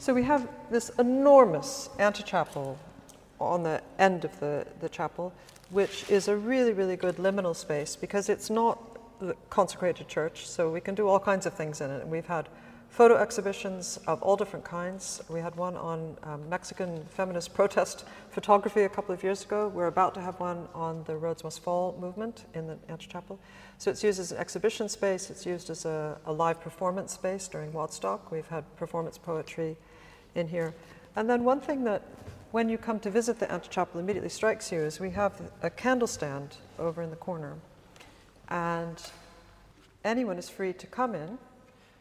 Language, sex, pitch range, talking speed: English, female, 165-205 Hz, 185 wpm